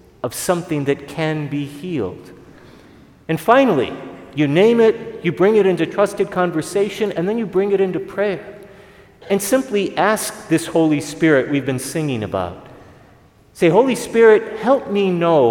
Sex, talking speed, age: male, 155 wpm, 40-59